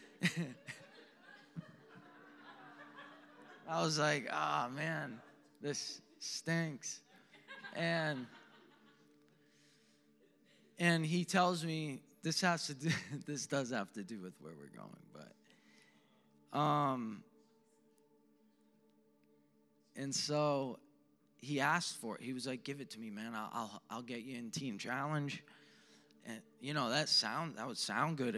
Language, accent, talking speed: English, American, 125 wpm